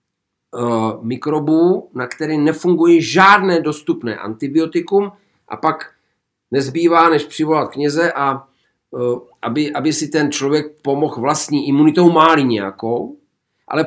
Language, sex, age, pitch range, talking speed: Czech, male, 50-69, 130-175 Hz, 110 wpm